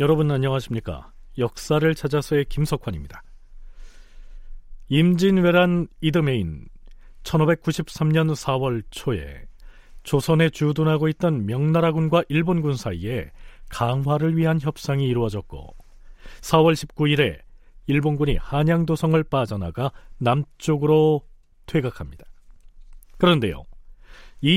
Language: Korean